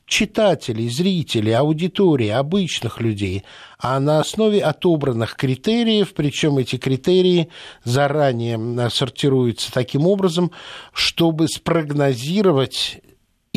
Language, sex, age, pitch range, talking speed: Russian, male, 60-79, 125-175 Hz, 85 wpm